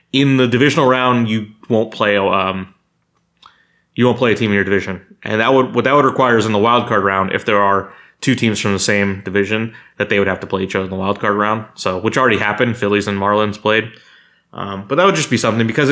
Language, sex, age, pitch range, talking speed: English, male, 20-39, 105-140 Hz, 255 wpm